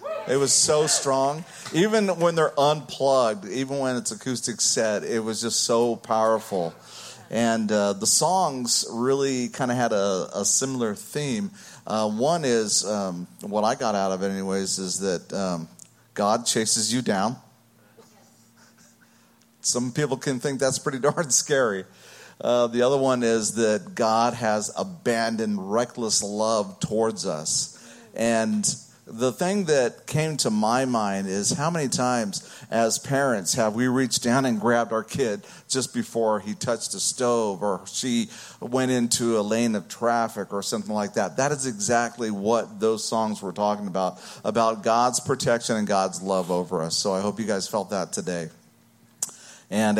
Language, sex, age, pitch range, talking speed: English, male, 40-59, 105-130 Hz, 160 wpm